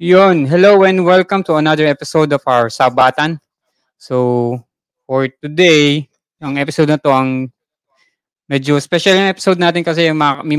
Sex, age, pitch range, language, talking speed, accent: male, 20-39, 125-165 Hz, English, 140 wpm, Filipino